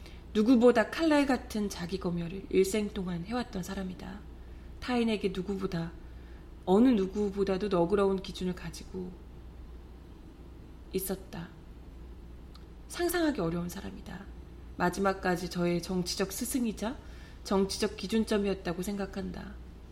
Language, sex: Korean, female